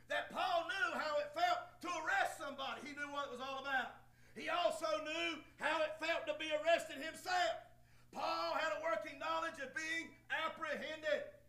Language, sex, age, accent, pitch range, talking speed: English, male, 50-69, American, 275-325 Hz, 180 wpm